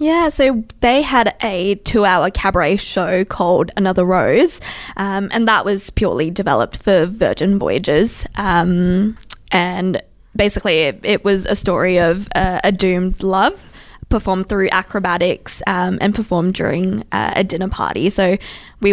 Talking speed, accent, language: 145 wpm, Australian, English